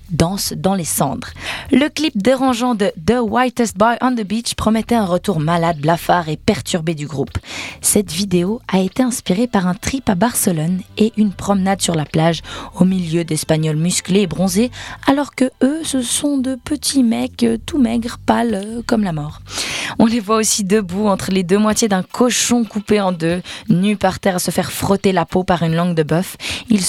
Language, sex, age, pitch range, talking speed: French, female, 20-39, 170-225 Hz, 195 wpm